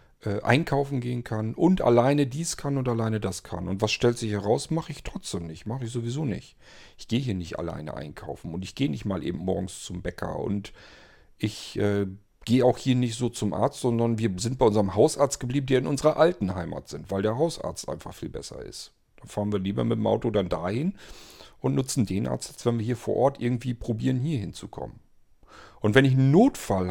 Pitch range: 100-130 Hz